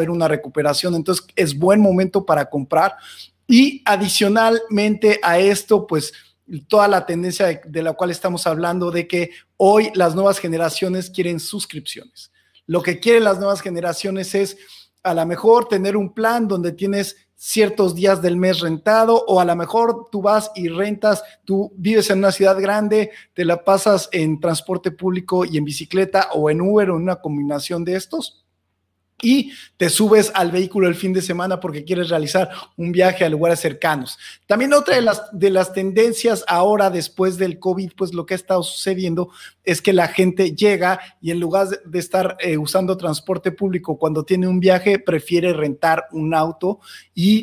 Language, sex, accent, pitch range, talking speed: Spanish, male, Mexican, 170-200 Hz, 175 wpm